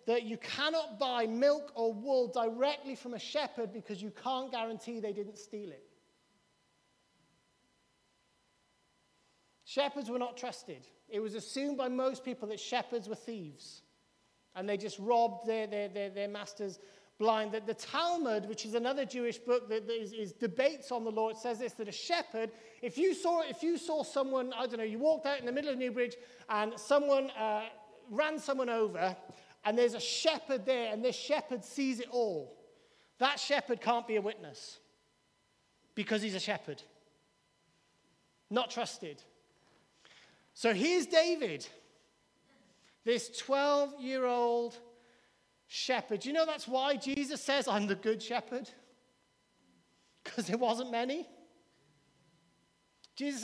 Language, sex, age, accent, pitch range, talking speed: English, male, 40-59, British, 220-270 Hz, 150 wpm